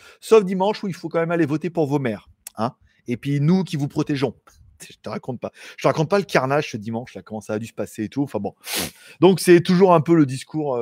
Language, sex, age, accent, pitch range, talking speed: French, male, 30-49, French, 140-210 Hz, 265 wpm